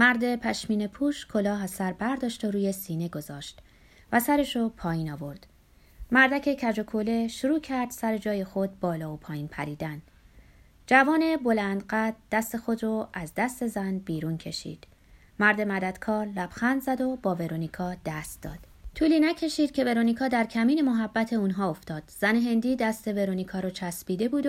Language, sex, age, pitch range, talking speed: Persian, female, 20-39, 185-255 Hz, 150 wpm